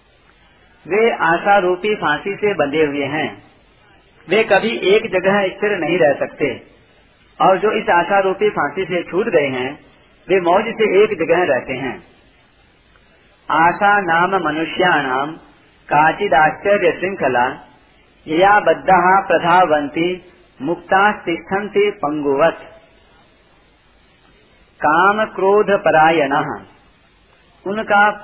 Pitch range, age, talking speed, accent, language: 160-205 Hz, 50-69, 100 wpm, native, Hindi